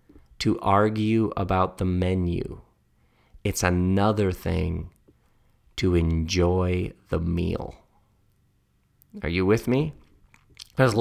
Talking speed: 95 wpm